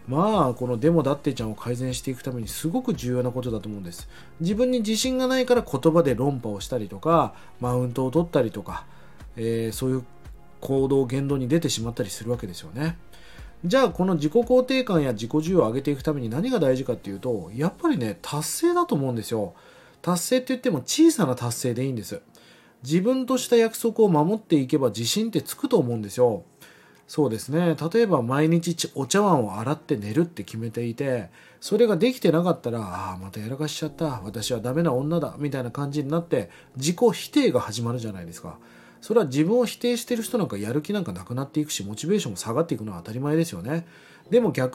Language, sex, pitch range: Japanese, male, 120-205 Hz